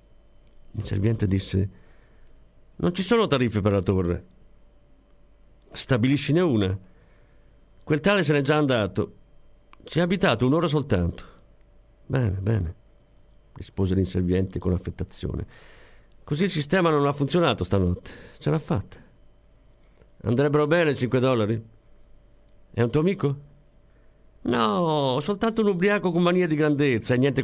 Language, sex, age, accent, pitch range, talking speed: Italian, male, 50-69, native, 95-145 Hz, 125 wpm